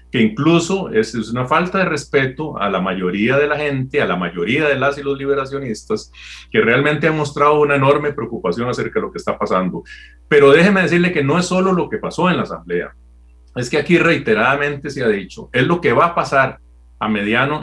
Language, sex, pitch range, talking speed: Spanish, male, 110-155 Hz, 210 wpm